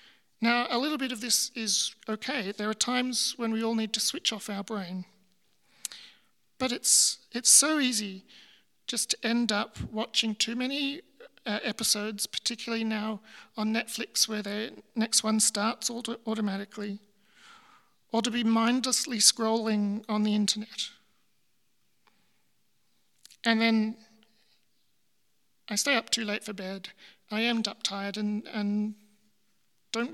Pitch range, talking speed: 215-245 Hz, 135 wpm